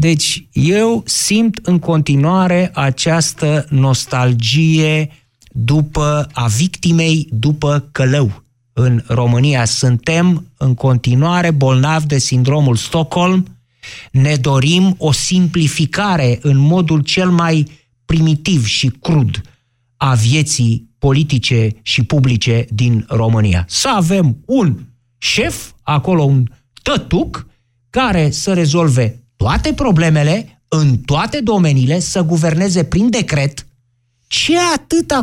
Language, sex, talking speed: Romanian, male, 100 wpm